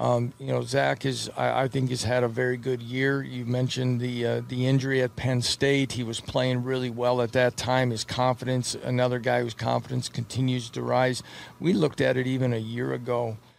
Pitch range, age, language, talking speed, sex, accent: 120-135 Hz, 50-69, English, 210 wpm, male, American